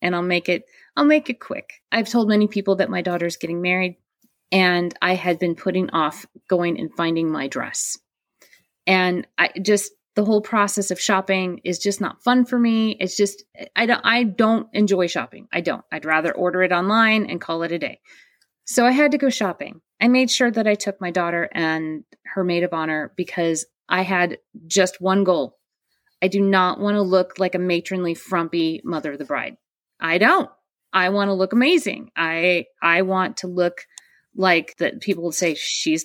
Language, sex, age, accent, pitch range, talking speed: English, female, 30-49, American, 175-220 Hz, 200 wpm